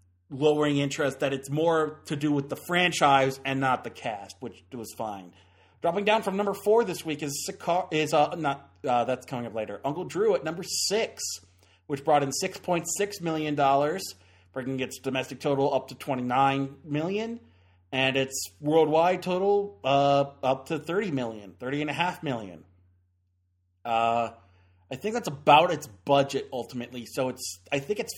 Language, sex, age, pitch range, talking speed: English, male, 30-49, 115-155 Hz, 175 wpm